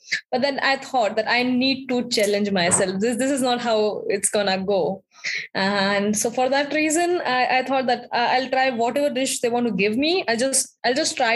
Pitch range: 220-260 Hz